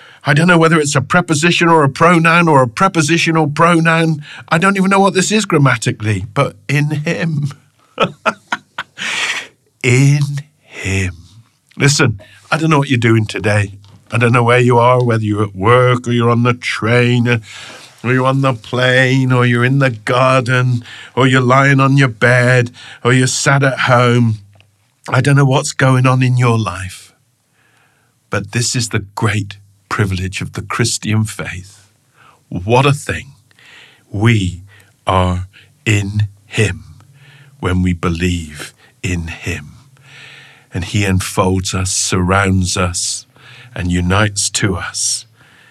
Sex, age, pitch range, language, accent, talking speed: male, 50-69, 100-135 Hz, English, British, 145 wpm